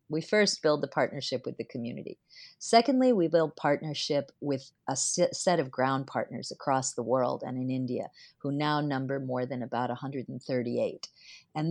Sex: female